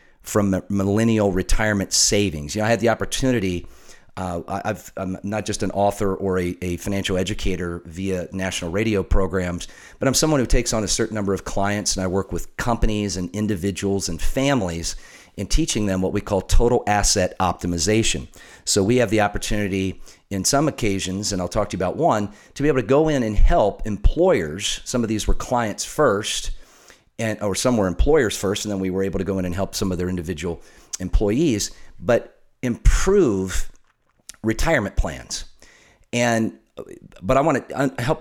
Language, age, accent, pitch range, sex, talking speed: English, 40-59, American, 95-110 Hz, male, 180 wpm